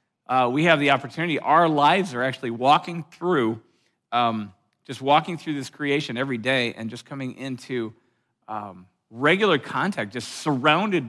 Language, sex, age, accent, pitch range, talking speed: English, male, 50-69, American, 120-165 Hz, 150 wpm